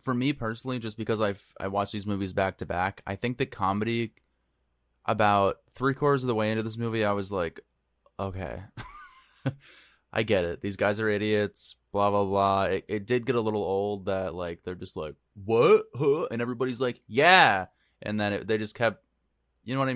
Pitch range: 95-115 Hz